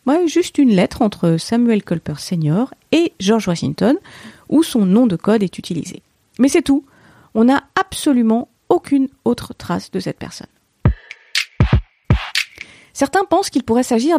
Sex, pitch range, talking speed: female, 180-245 Hz, 145 wpm